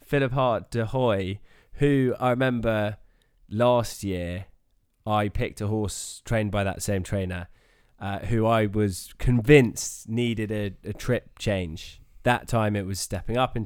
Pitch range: 95-115 Hz